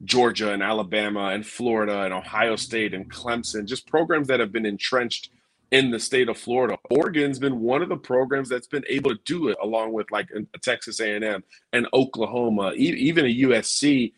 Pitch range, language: 110-135 Hz, English